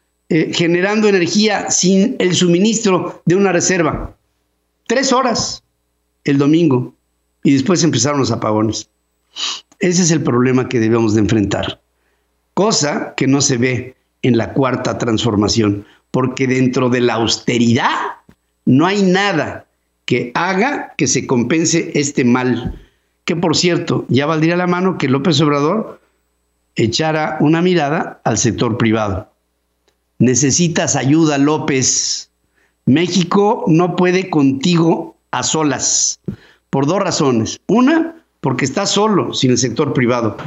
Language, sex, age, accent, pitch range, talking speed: Spanish, male, 50-69, Mexican, 110-175 Hz, 130 wpm